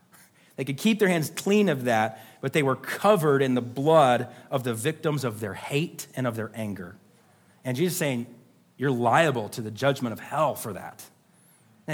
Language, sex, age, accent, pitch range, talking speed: English, male, 30-49, American, 140-195 Hz, 195 wpm